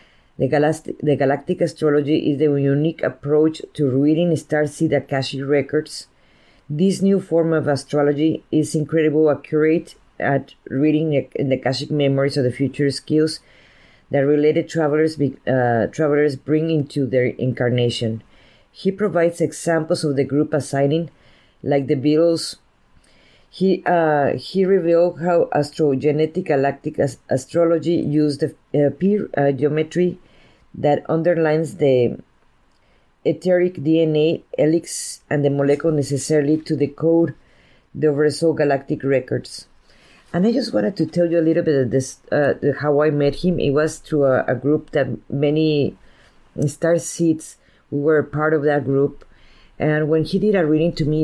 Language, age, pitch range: English, 40-59, 140-165 Hz